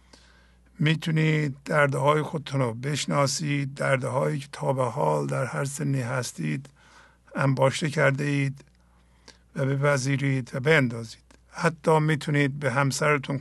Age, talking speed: 50-69, 120 wpm